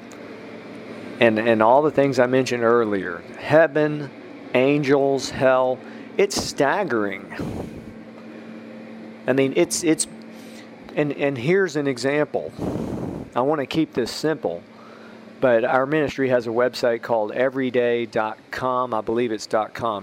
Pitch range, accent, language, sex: 115-140 Hz, American, English, male